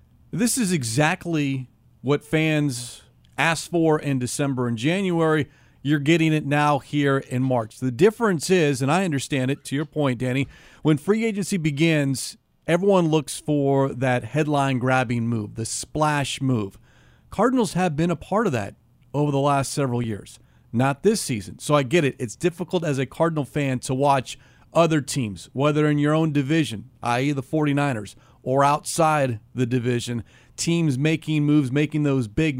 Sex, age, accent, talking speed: male, 40-59, American, 165 wpm